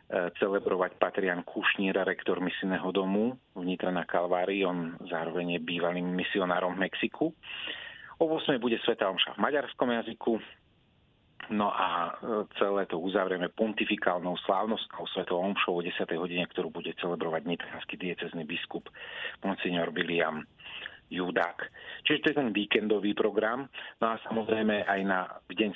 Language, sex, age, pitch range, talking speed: Slovak, male, 40-59, 90-110 Hz, 135 wpm